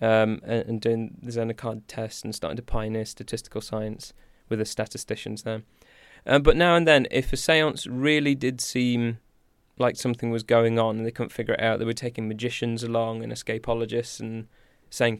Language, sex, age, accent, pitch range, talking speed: English, male, 20-39, British, 110-120 Hz, 190 wpm